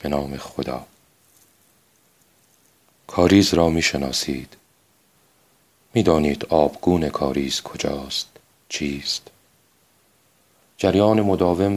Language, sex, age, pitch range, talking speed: Persian, male, 40-59, 80-95 Hz, 70 wpm